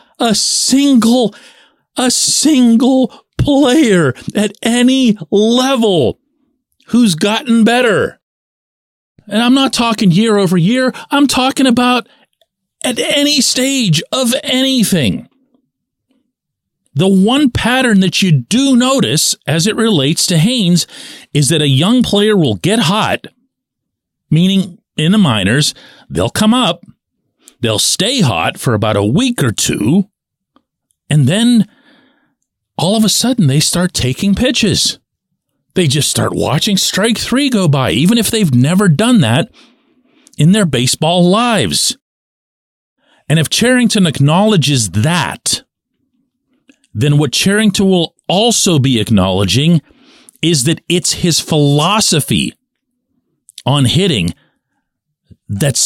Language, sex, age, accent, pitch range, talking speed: English, male, 40-59, American, 160-250 Hz, 120 wpm